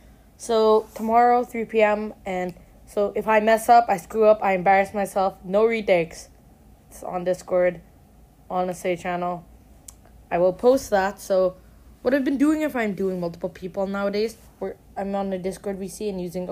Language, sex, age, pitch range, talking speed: English, female, 20-39, 170-195 Hz, 175 wpm